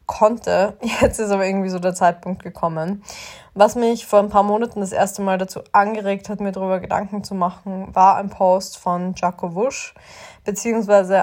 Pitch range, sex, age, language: 190-210 Hz, female, 20-39, German